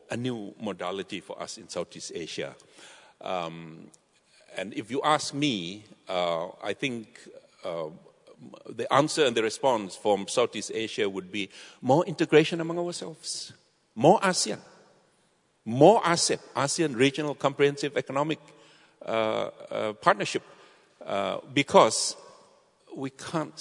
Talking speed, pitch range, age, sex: 120 wpm, 105-155 Hz, 60-79, male